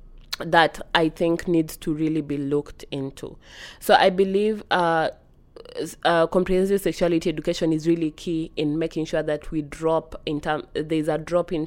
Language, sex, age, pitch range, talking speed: English, female, 20-39, 150-175 Hz, 170 wpm